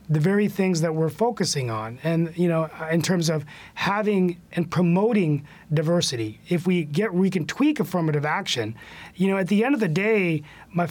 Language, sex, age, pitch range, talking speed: English, male, 30-49, 160-195 Hz, 185 wpm